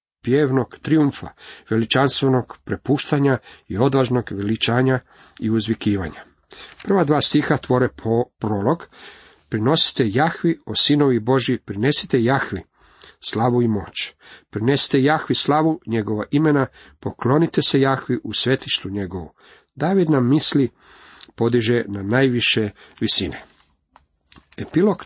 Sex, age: male, 40-59